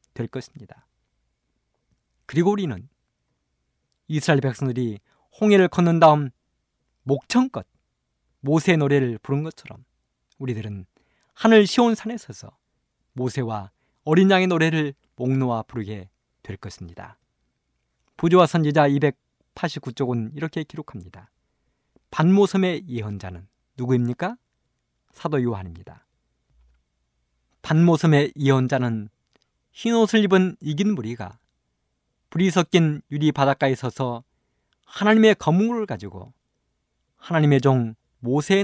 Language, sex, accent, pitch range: Korean, male, native, 110-170 Hz